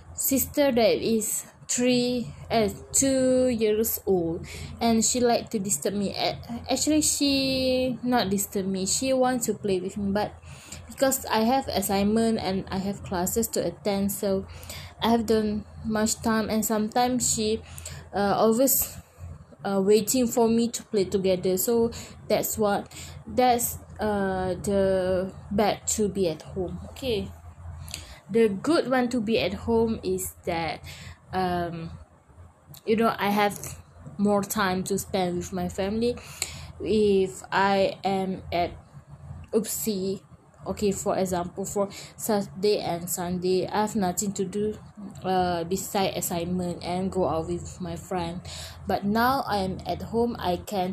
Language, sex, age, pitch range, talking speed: English, female, 20-39, 185-225 Hz, 145 wpm